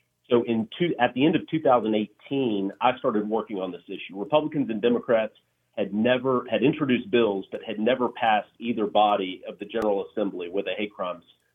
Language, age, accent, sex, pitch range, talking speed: English, 40-59, American, male, 105-120 Hz, 185 wpm